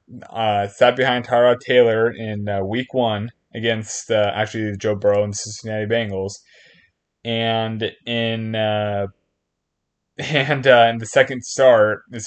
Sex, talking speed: male, 125 wpm